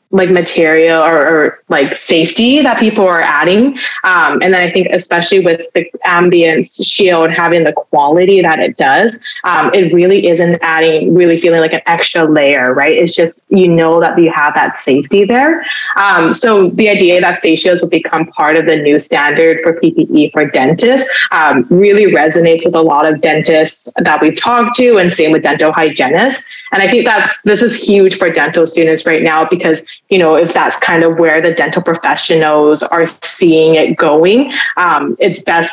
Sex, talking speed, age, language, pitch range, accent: female, 190 wpm, 20-39, English, 160-185 Hz, American